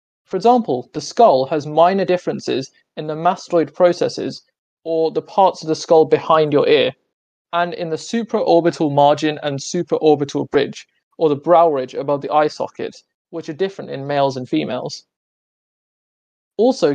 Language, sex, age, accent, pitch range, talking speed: English, male, 20-39, British, 145-170 Hz, 155 wpm